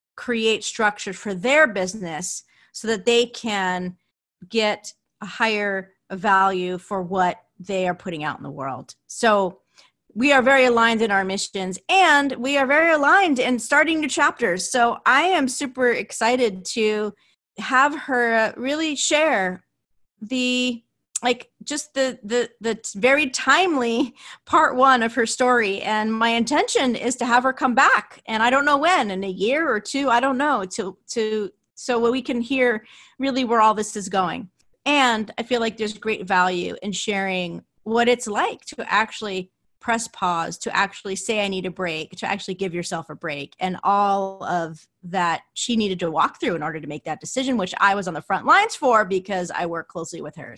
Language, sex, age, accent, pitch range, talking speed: English, female, 30-49, American, 190-260 Hz, 185 wpm